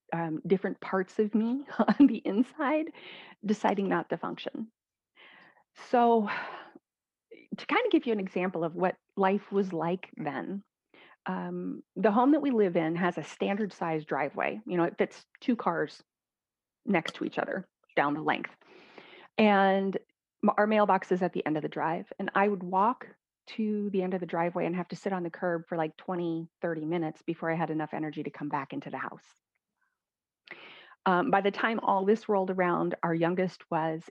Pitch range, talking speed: 170-220 Hz, 185 wpm